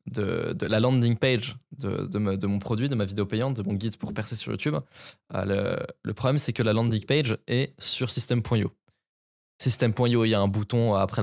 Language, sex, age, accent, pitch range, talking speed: French, male, 20-39, French, 105-130 Hz, 225 wpm